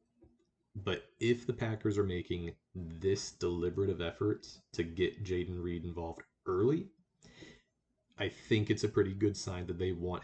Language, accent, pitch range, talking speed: English, American, 85-105 Hz, 145 wpm